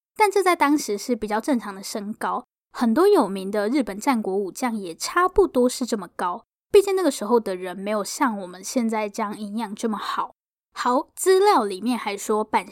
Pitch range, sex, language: 215-295 Hz, female, Chinese